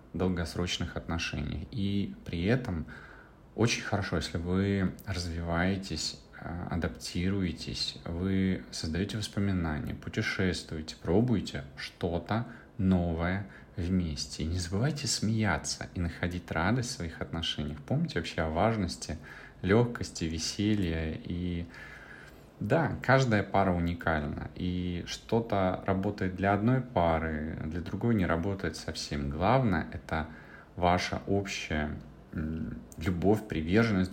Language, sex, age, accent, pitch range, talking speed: Russian, male, 30-49, native, 80-100 Hz, 100 wpm